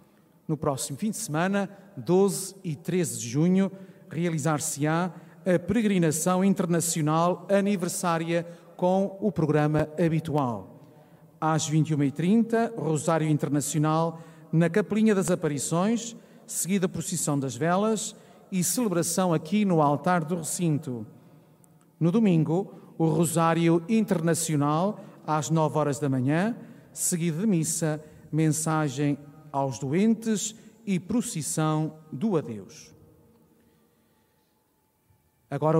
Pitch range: 155-190 Hz